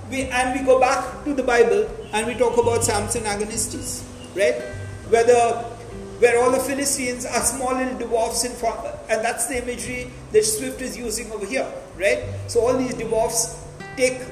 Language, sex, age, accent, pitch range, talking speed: English, male, 50-69, Indian, 200-260 Hz, 180 wpm